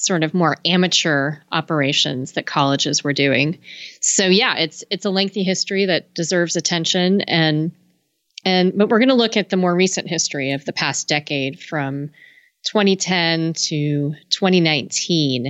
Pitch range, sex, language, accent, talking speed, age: 155-190 Hz, female, English, American, 145 wpm, 30-49